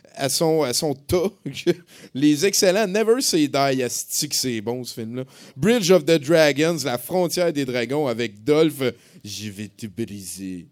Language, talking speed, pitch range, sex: French, 160 wpm, 130-190 Hz, male